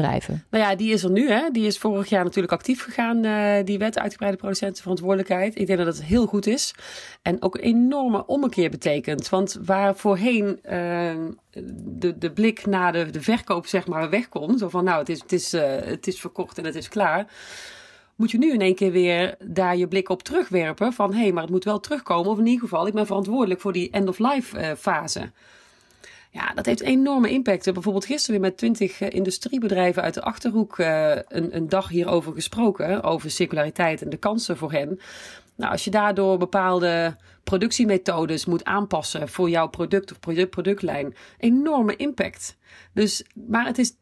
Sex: female